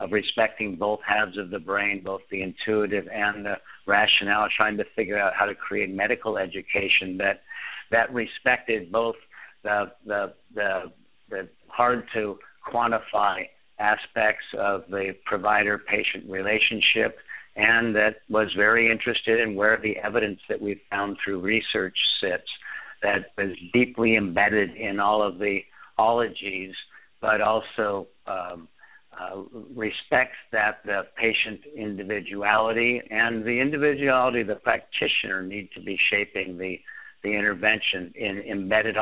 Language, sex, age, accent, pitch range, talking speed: English, male, 60-79, American, 100-115 Hz, 135 wpm